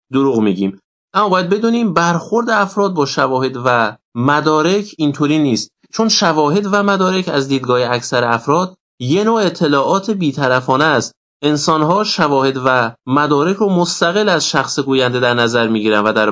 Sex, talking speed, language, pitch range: male, 145 wpm, Persian, 130-190 Hz